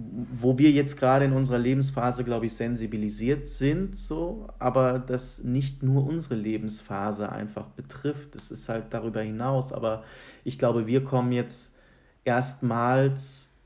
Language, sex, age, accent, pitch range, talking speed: German, male, 40-59, German, 110-130 Hz, 140 wpm